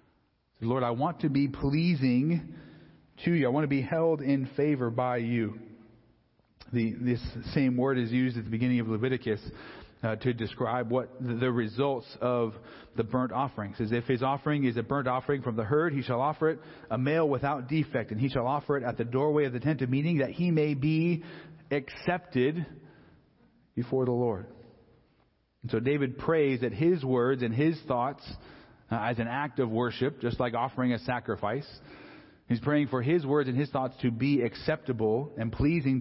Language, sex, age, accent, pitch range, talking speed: English, male, 40-59, American, 120-145 Hz, 185 wpm